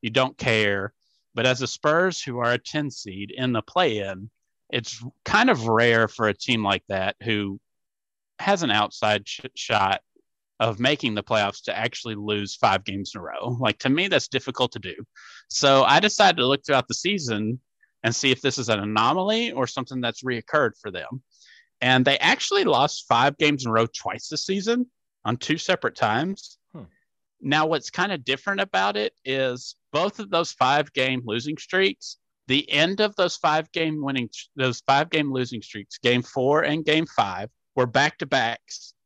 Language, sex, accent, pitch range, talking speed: English, male, American, 120-160 Hz, 180 wpm